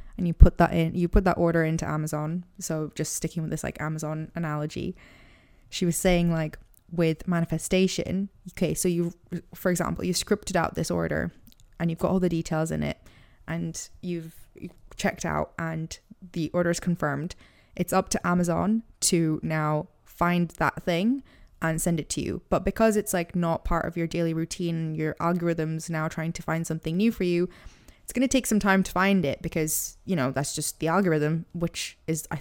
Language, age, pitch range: English, 20-39, 160-180 Hz